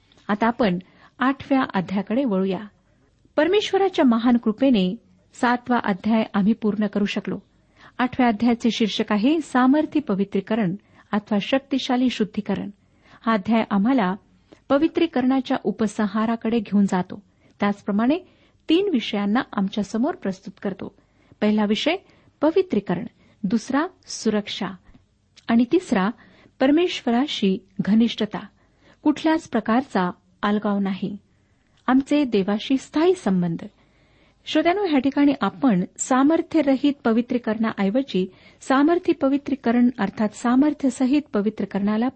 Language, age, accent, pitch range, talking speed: Marathi, 50-69, native, 205-270 Hz, 95 wpm